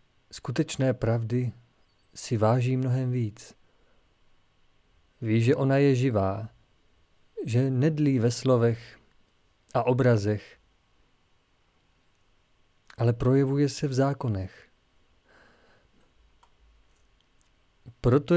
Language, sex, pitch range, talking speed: Czech, male, 105-145 Hz, 75 wpm